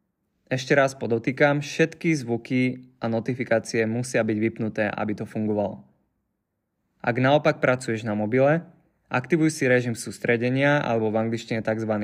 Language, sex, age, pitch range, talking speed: Slovak, male, 20-39, 110-130 Hz, 130 wpm